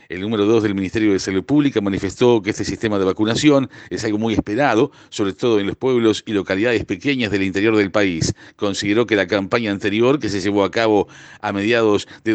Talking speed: 210 wpm